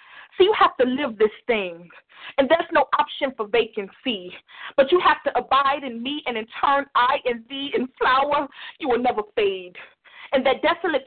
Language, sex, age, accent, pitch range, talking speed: English, female, 40-59, American, 265-365 Hz, 190 wpm